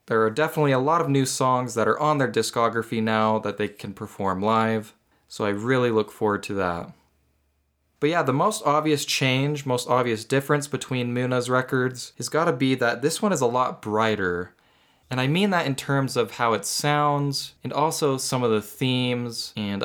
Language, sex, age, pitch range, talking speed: English, male, 20-39, 110-140 Hz, 195 wpm